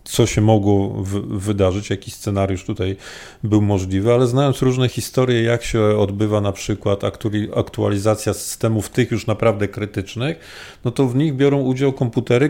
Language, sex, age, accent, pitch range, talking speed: Polish, male, 40-59, native, 100-130 Hz, 150 wpm